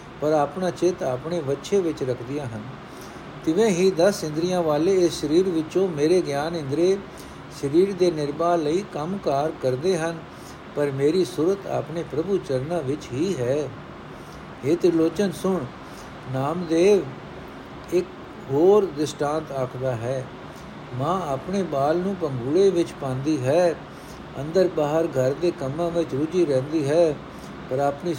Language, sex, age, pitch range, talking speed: Punjabi, male, 60-79, 150-190 Hz, 120 wpm